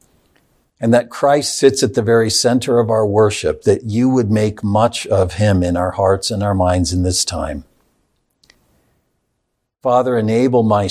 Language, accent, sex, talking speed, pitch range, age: English, American, male, 165 wpm, 100-120 Hz, 60-79